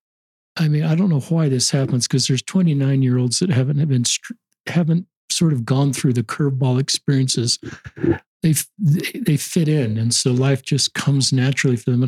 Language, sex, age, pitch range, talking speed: English, male, 50-69, 125-150 Hz, 190 wpm